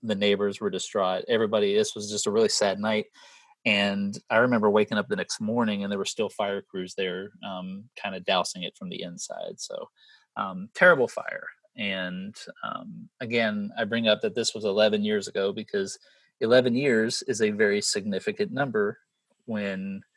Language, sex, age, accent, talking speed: English, male, 30-49, American, 180 wpm